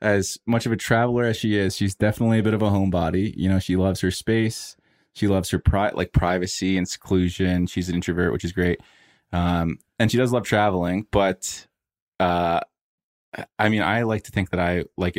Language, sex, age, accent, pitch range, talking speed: English, male, 20-39, American, 90-110 Hz, 205 wpm